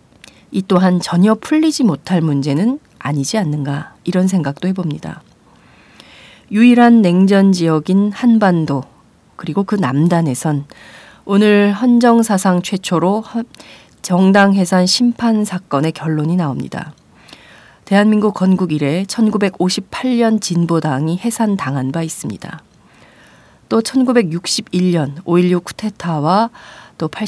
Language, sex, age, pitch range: Korean, female, 40-59, 160-210 Hz